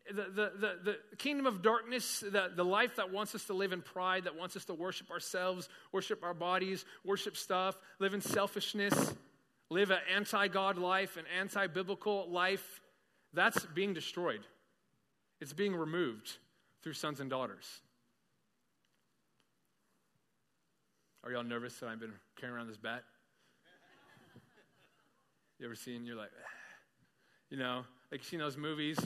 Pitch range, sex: 140-225 Hz, male